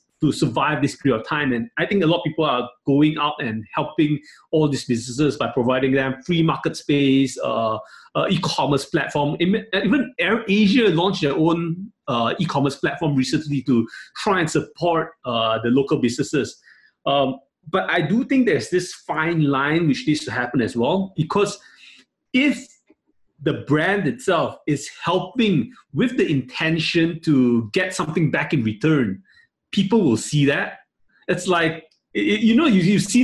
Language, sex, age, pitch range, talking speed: English, male, 30-49, 145-195 Hz, 160 wpm